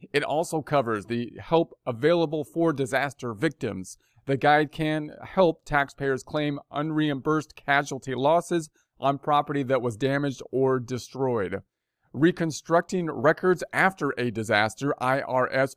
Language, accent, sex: English, American, male